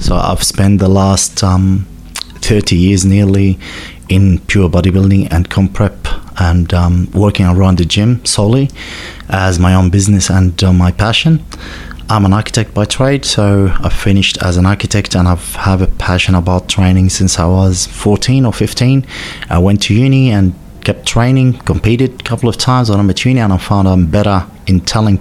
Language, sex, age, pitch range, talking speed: English, male, 30-49, 90-105 Hz, 180 wpm